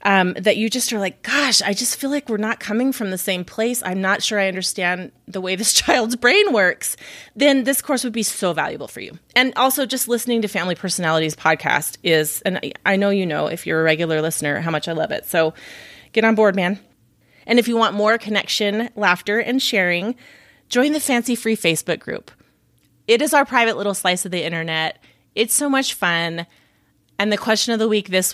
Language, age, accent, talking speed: English, 30-49, American, 215 wpm